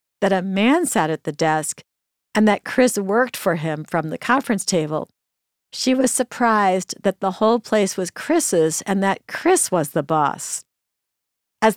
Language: English